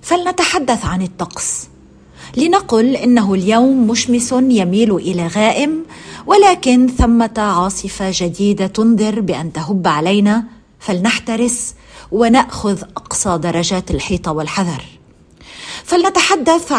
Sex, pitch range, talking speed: female, 180-250 Hz, 90 wpm